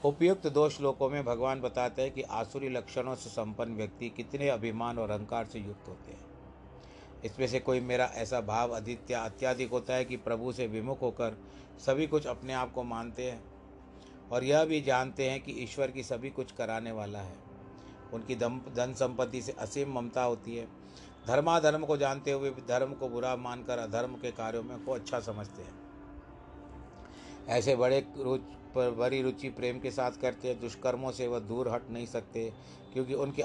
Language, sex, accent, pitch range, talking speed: Hindi, male, native, 115-135 Hz, 180 wpm